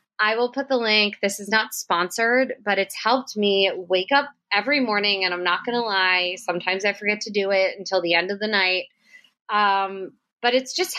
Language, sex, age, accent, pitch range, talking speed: English, female, 20-39, American, 190-245 Hz, 215 wpm